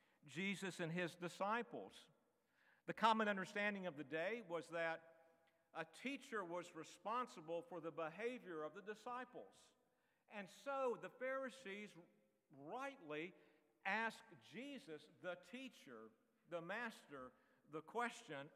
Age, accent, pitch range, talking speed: 50-69, American, 160-220 Hz, 115 wpm